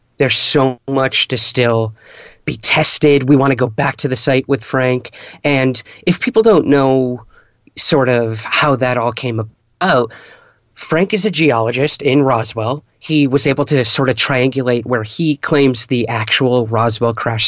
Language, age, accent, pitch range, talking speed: English, 30-49, American, 115-140 Hz, 170 wpm